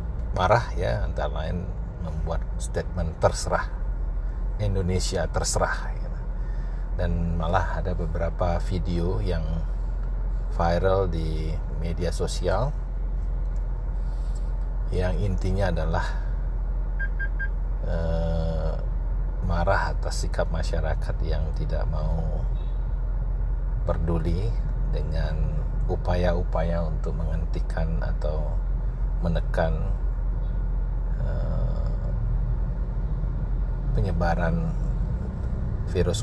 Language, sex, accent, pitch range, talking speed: Indonesian, male, native, 80-90 Hz, 65 wpm